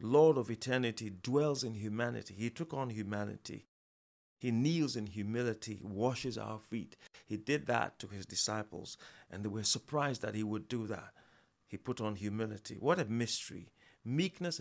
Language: English